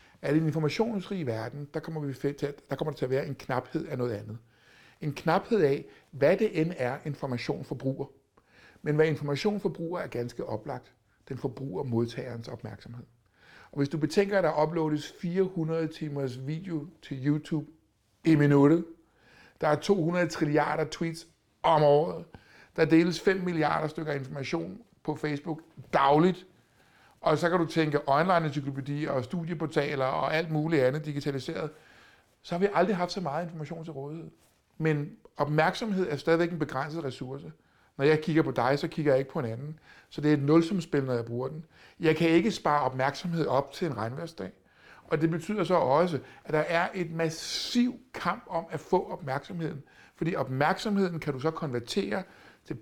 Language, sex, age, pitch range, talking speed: Danish, male, 60-79, 140-165 Hz, 175 wpm